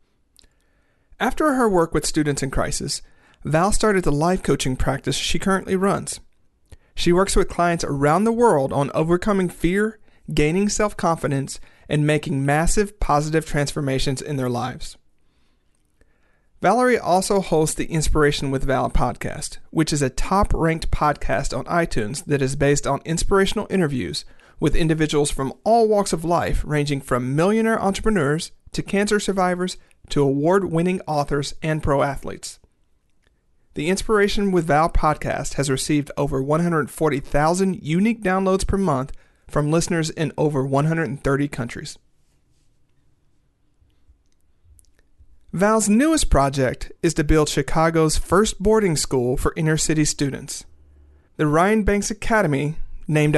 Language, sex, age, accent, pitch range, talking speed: English, male, 40-59, American, 140-185 Hz, 130 wpm